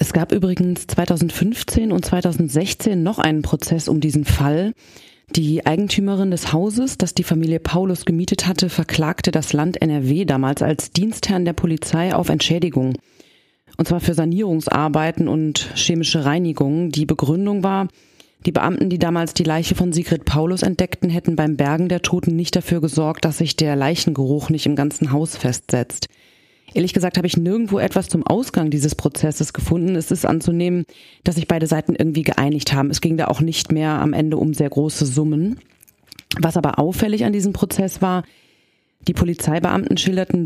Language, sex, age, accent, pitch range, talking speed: German, female, 30-49, German, 155-180 Hz, 170 wpm